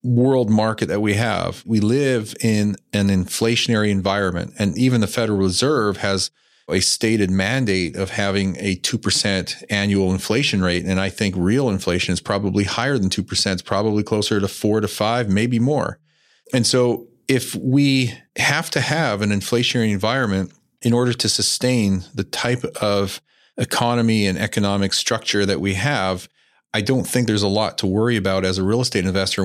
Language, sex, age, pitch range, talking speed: English, male, 40-59, 95-115 Hz, 170 wpm